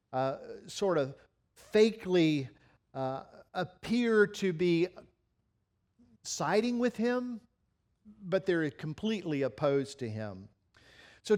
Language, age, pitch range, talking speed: English, 50-69, 135-200 Hz, 95 wpm